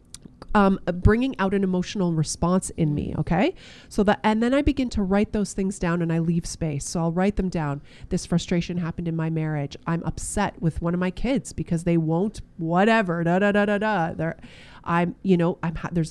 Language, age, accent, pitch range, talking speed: English, 30-49, American, 170-225 Hz, 210 wpm